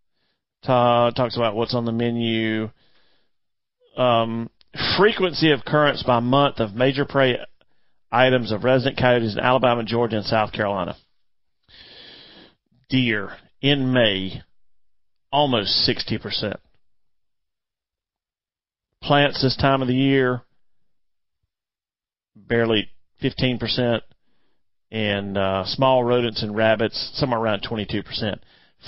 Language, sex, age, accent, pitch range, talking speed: English, male, 40-59, American, 115-145 Hz, 100 wpm